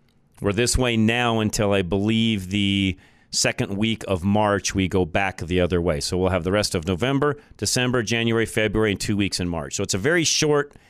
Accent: American